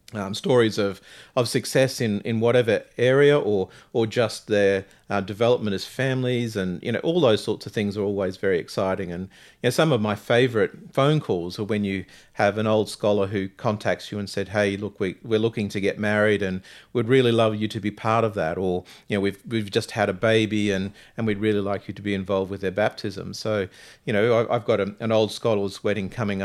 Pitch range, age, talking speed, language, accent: 100-120 Hz, 40-59, 220 wpm, English, Australian